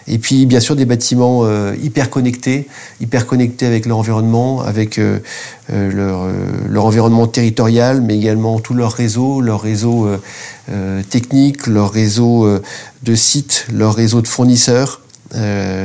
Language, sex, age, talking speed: French, male, 40-59, 130 wpm